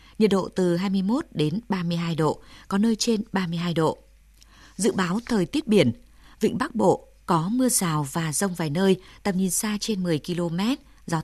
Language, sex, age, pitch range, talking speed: Vietnamese, female, 20-39, 170-220 Hz, 180 wpm